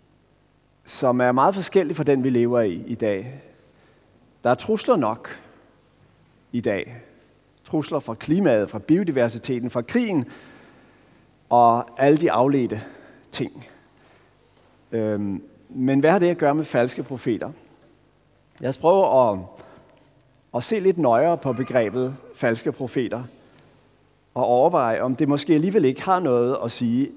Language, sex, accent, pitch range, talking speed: Danish, male, native, 125-185 Hz, 135 wpm